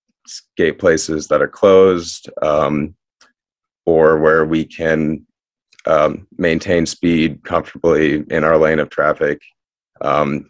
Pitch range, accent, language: 80-90 Hz, American, English